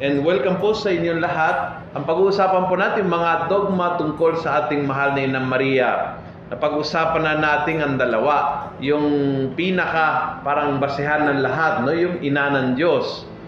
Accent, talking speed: native, 160 wpm